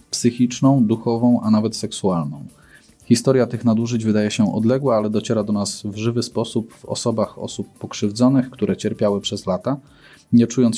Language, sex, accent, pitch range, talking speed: Polish, male, native, 105-125 Hz, 155 wpm